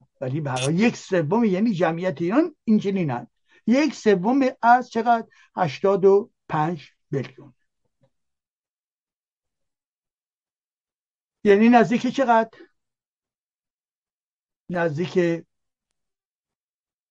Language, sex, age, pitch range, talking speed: Persian, male, 60-79, 160-230 Hz, 75 wpm